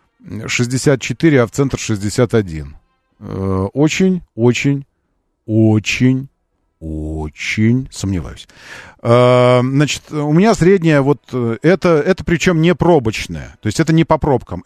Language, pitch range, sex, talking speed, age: Russian, 110-165 Hz, male, 105 wpm, 40-59